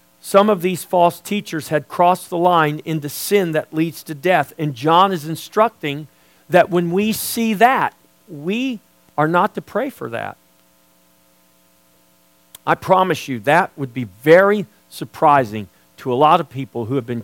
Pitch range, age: 115-185 Hz, 50-69